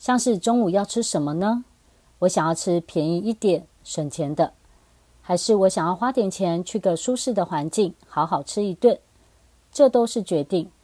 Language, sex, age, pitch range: Chinese, female, 40-59, 160-220 Hz